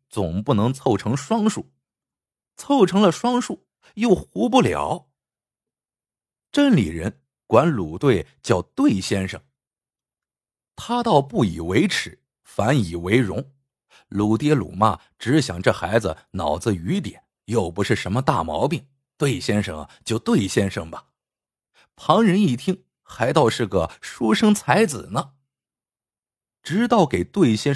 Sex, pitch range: male, 100-165 Hz